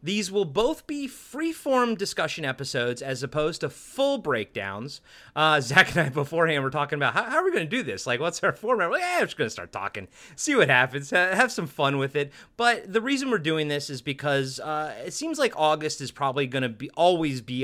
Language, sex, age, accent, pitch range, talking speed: English, male, 30-49, American, 125-190 Hz, 230 wpm